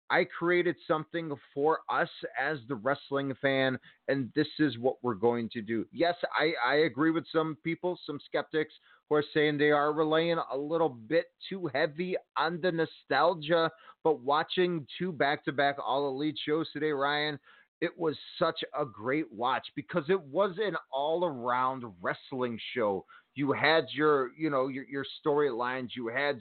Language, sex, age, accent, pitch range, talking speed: English, male, 30-49, American, 140-170 Hz, 165 wpm